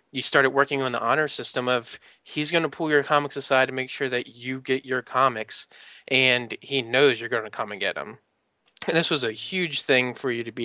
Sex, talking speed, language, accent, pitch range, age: male, 240 wpm, English, American, 115-130 Hz, 20-39